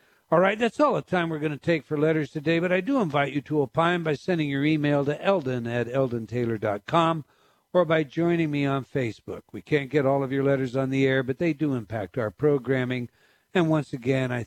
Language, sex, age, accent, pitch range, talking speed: English, male, 60-79, American, 130-170 Hz, 225 wpm